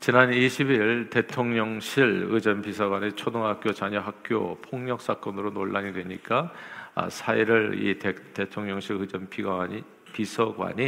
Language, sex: Korean, male